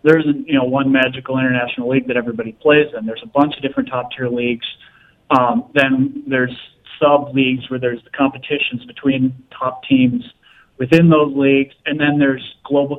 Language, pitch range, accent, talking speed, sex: English, 125-145 Hz, American, 180 wpm, male